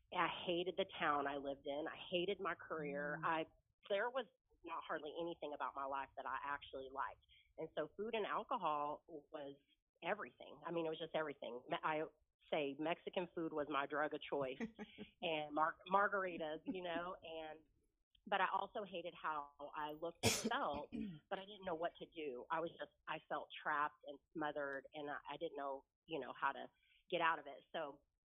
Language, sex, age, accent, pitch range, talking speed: English, female, 30-49, American, 145-180 Hz, 190 wpm